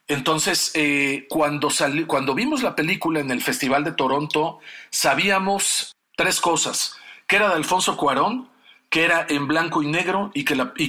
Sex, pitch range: male, 140-190 Hz